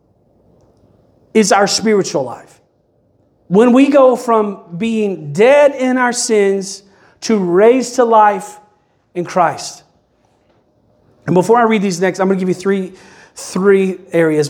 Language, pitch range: English, 165-225 Hz